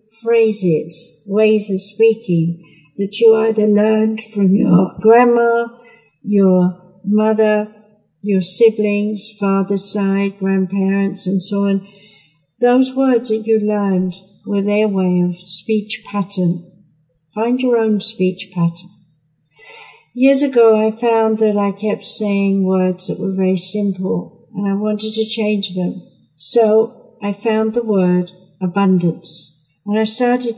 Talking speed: 130 wpm